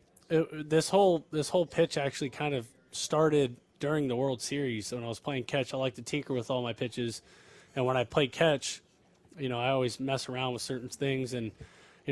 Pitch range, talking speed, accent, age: 120-145 Hz, 215 wpm, American, 20-39